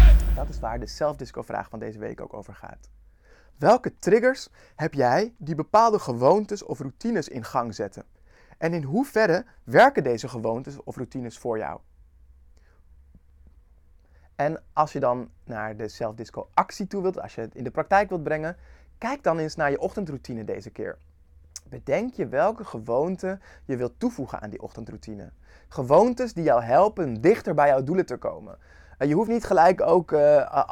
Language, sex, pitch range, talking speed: Dutch, male, 120-180 Hz, 165 wpm